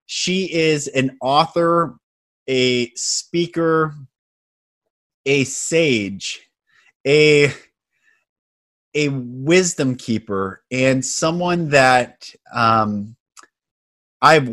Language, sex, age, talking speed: English, male, 30-49, 70 wpm